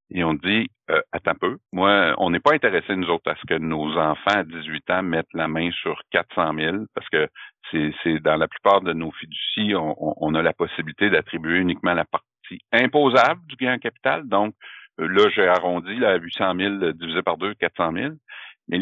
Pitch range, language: 80-105 Hz, French